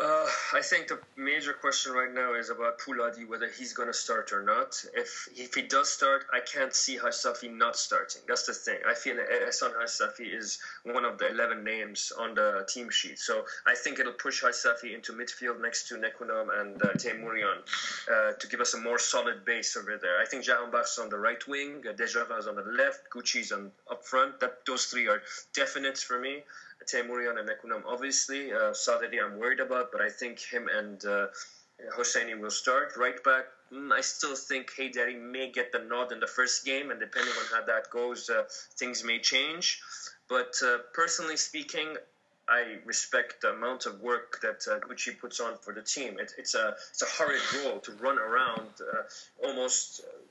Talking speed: 200 wpm